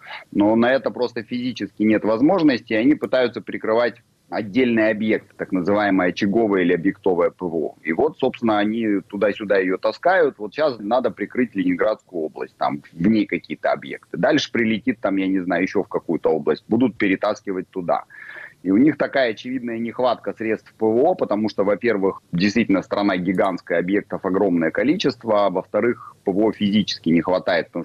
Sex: male